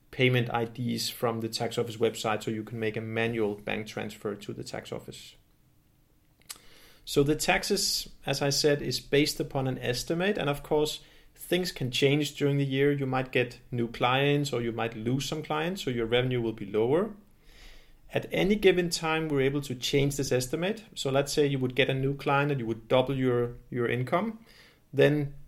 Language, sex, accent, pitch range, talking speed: English, male, Danish, 115-145 Hz, 195 wpm